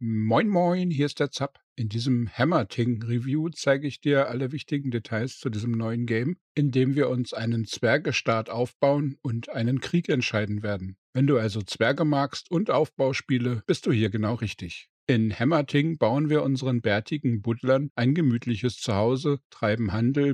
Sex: male